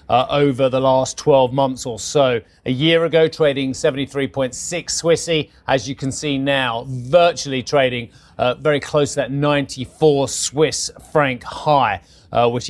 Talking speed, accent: 150 wpm, British